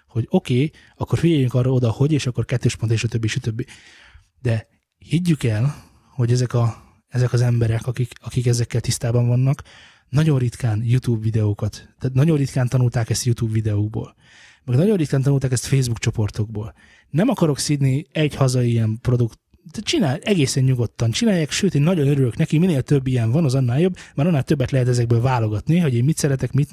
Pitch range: 120-145 Hz